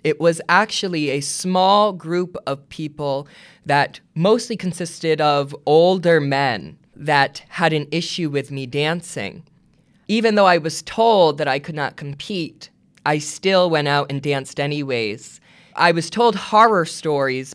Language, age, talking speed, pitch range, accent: English, 20-39, 145 wpm, 140-175 Hz, American